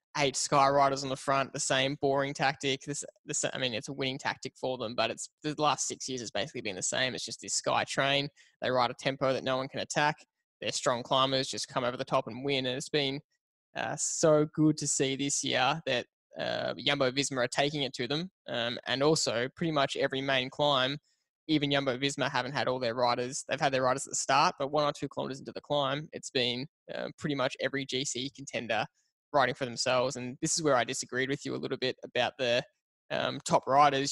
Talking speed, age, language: 230 wpm, 10-29, English